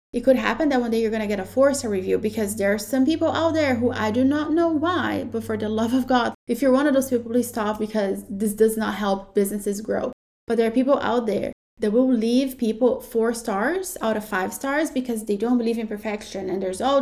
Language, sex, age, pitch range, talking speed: English, female, 20-39, 210-250 Hz, 255 wpm